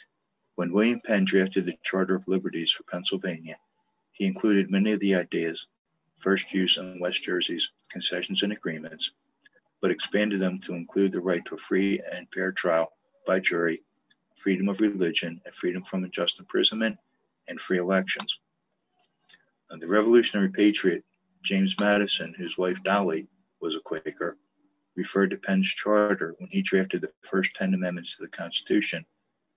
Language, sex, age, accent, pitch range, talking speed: English, male, 50-69, American, 90-105 Hz, 155 wpm